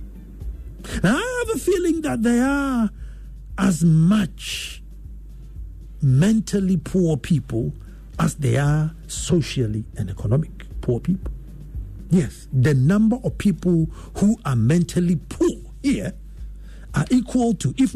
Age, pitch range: 50-69, 150-240 Hz